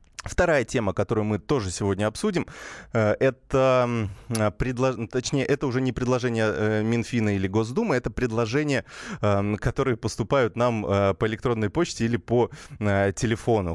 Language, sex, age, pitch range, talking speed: Russian, male, 20-39, 100-125 Hz, 115 wpm